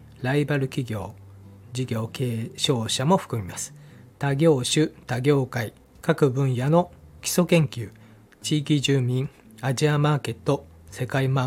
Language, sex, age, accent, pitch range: Japanese, male, 40-59, native, 115-150 Hz